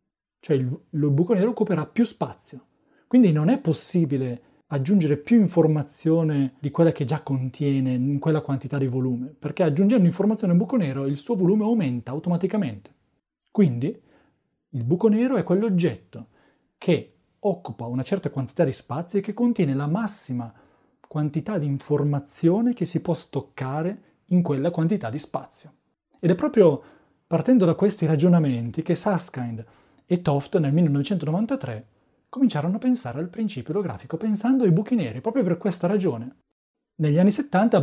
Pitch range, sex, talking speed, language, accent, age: 140-200 Hz, male, 150 wpm, Italian, native, 30-49